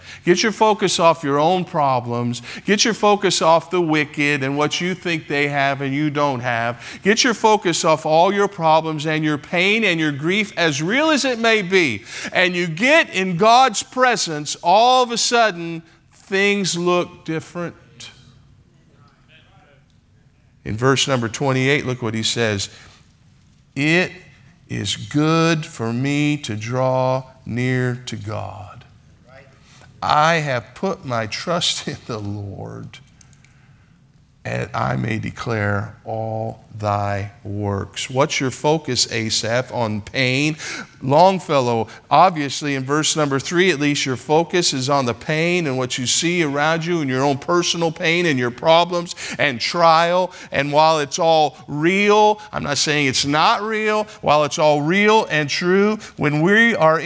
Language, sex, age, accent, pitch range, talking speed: English, male, 50-69, American, 125-175 Hz, 150 wpm